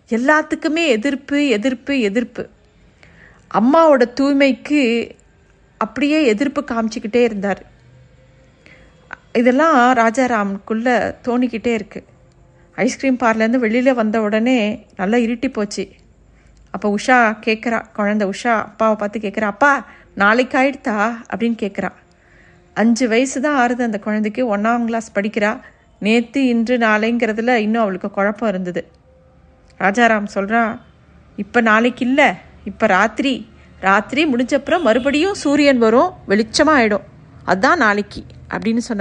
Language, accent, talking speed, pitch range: Tamil, native, 105 wpm, 210-255 Hz